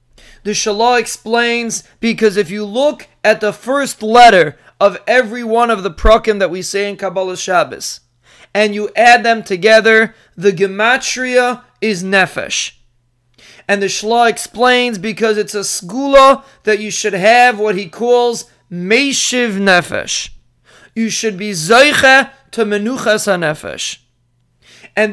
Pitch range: 195-240 Hz